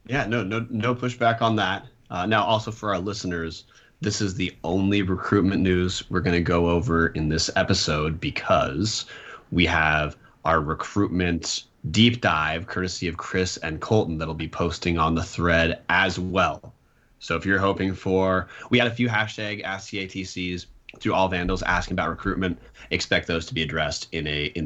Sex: male